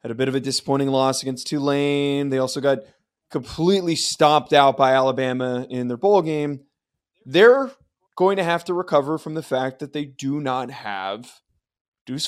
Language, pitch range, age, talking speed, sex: English, 130-160 Hz, 20-39, 175 wpm, male